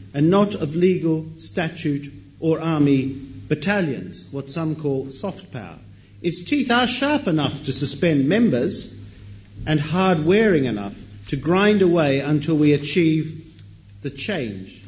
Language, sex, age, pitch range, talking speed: English, male, 50-69, 120-165 Hz, 130 wpm